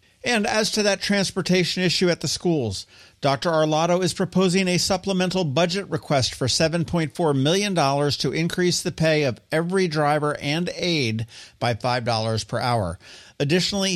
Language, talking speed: English, 145 wpm